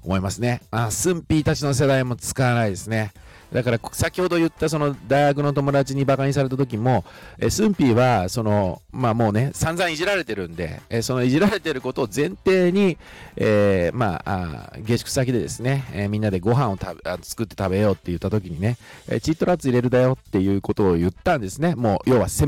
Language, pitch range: Japanese, 95-145 Hz